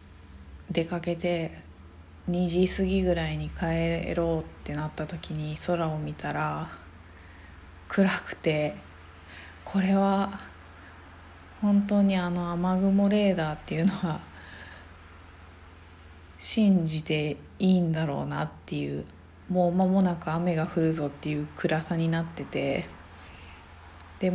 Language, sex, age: Japanese, female, 20-39